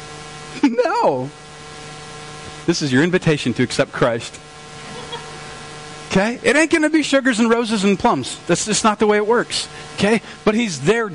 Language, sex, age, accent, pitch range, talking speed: English, male, 40-59, American, 160-230 Hz, 160 wpm